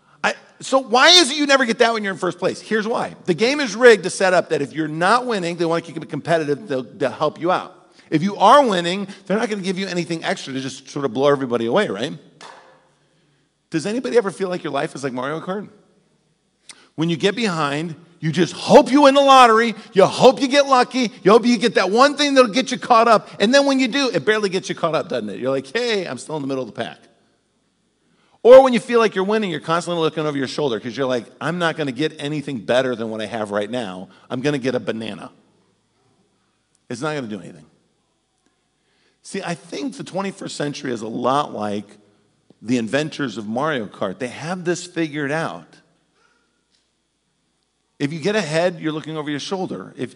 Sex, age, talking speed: male, 40-59, 230 wpm